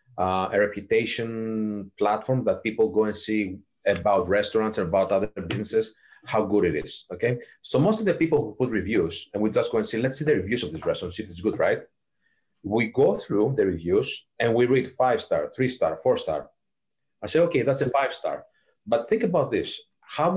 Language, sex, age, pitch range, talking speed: English, male, 30-49, 115-170 Hz, 195 wpm